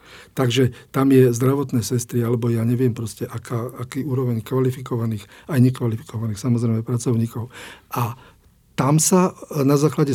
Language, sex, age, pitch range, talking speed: Slovak, male, 50-69, 115-135 Hz, 130 wpm